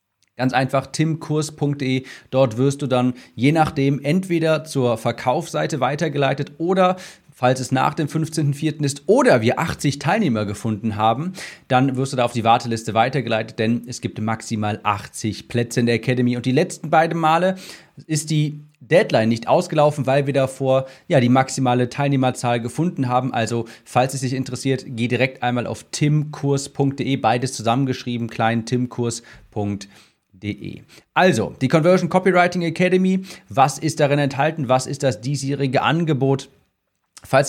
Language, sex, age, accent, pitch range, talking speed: German, male, 30-49, German, 125-160 Hz, 145 wpm